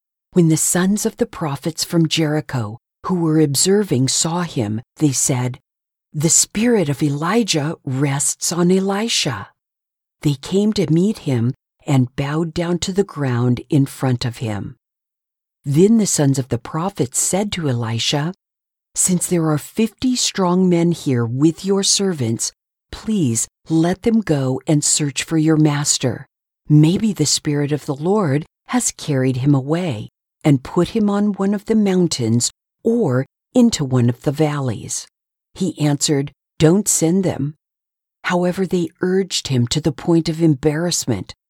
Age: 50-69